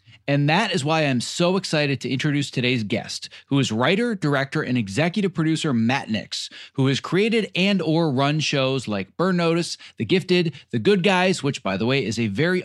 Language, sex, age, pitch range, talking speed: English, male, 30-49, 125-170 Hz, 200 wpm